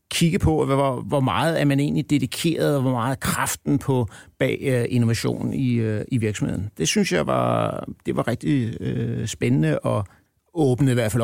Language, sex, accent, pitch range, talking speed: Danish, male, native, 120-150 Hz, 180 wpm